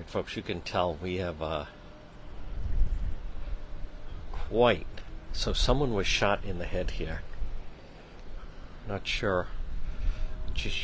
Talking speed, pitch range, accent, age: 105 wpm, 85-110 Hz, American, 60-79